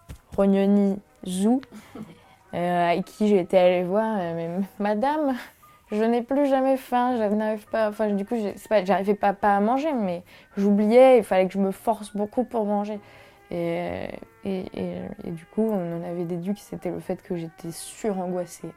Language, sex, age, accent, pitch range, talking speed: French, female, 20-39, French, 185-220 Hz, 190 wpm